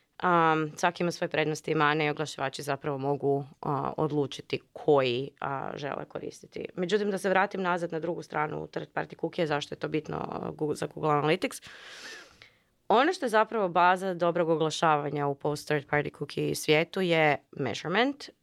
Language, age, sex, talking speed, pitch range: Croatian, 20-39, female, 160 wpm, 150-190 Hz